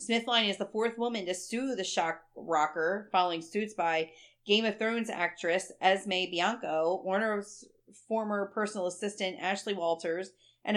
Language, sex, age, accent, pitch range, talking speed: English, female, 40-59, American, 175-210 Hz, 145 wpm